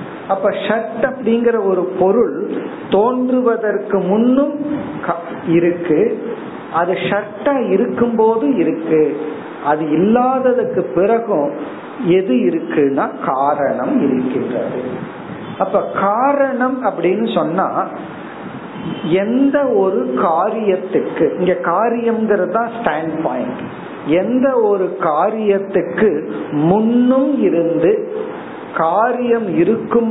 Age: 50-69